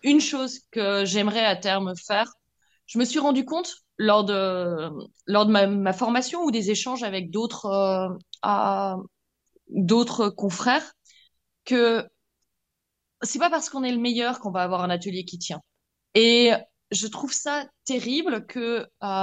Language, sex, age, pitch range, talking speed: French, female, 20-39, 190-245 Hz, 155 wpm